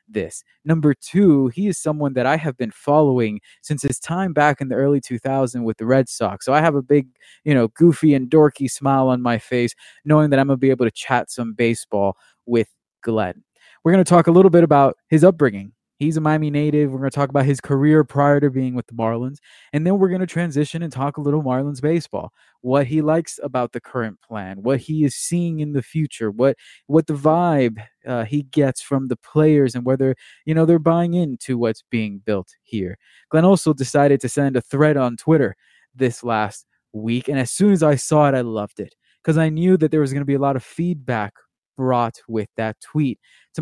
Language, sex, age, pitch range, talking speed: English, male, 20-39, 125-155 Hz, 225 wpm